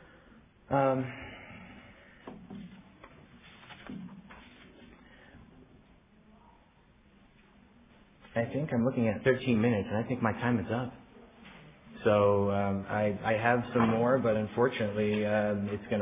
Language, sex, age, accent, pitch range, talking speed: English, male, 30-49, American, 105-130 Hz, 100 wpm